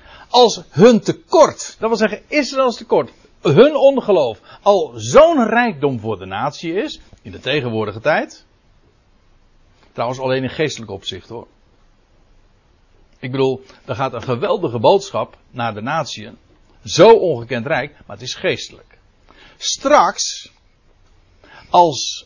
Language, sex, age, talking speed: Dutch, male, 60-79, 125 wpm